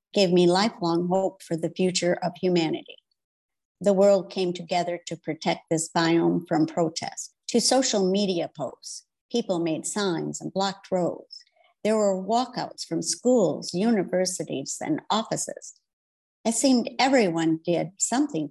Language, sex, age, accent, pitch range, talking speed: English, male, 60-79, American, 170-210 Hz, 135 wpm